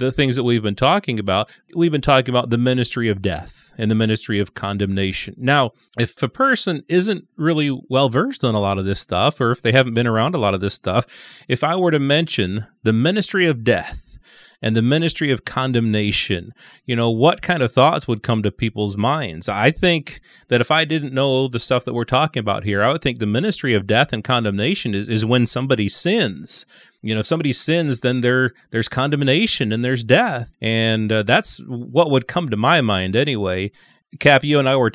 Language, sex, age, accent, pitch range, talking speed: English, male, 30-49, American, 110-135 Hz, 210 wpm